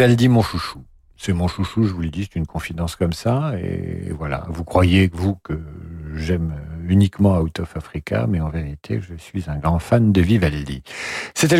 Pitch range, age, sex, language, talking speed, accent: 85-130 Hz, 50-69, male, French, 190 wpm, French